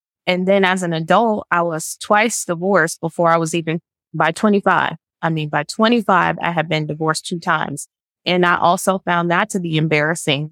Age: 20-39